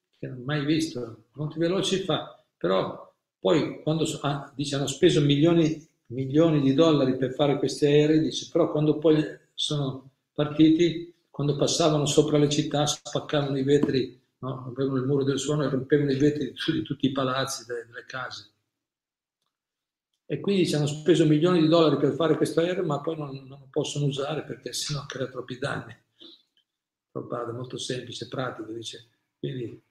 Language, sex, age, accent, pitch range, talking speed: Italian, male, 50-69, native, 130-155 Hz, 175 wpm